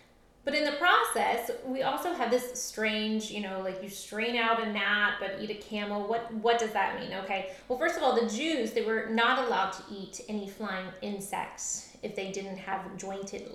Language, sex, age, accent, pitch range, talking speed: English, female, 20-39, American, 195-240 Hz, 210 wpm